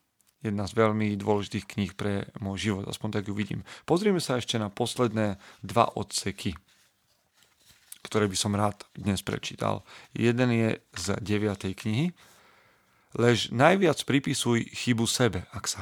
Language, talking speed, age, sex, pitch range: Slovak, 140 wpm, 40-59, male, 105-125 Hz